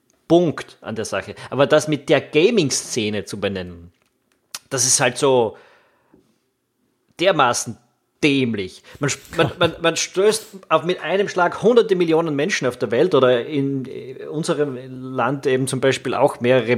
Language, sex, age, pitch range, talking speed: German, male, 30-49, 125-170 Hz, 145 wpm